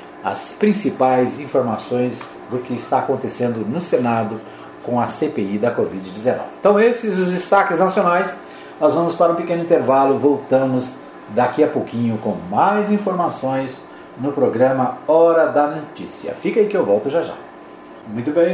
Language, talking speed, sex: Portuguese, 150 wpm, male